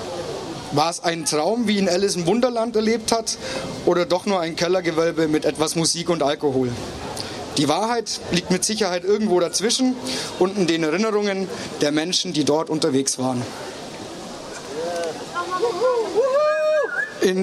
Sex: male